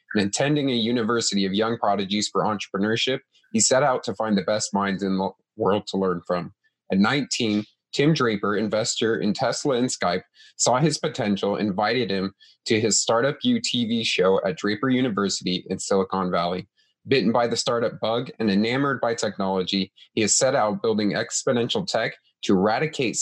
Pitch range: 100-125 Hz